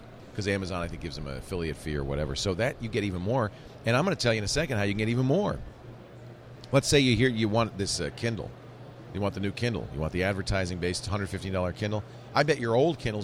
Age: 40-59